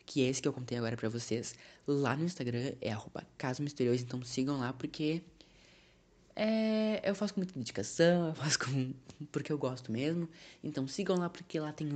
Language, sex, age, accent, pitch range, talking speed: Portuguese, female, 10-29, Brazilian, 115-155 Hz, 185 wpm